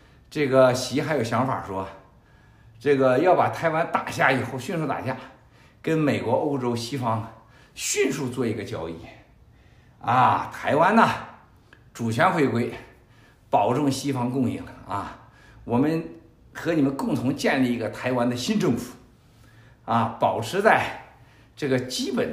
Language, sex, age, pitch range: Chinese, male, 50-69, 115-145 Hz